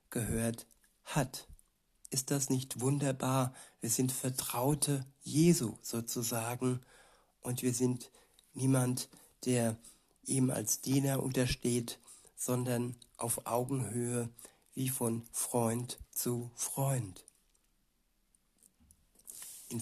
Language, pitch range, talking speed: German, 115-135 Hz, 90 wpm